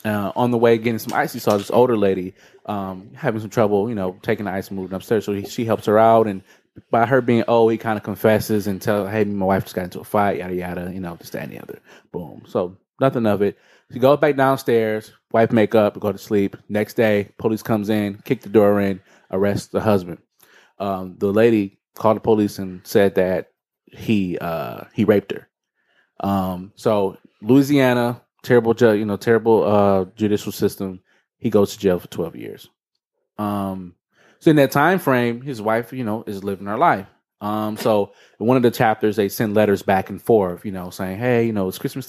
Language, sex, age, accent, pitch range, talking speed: English, male, 20-39, American, 100-115 Hz, 210 wpm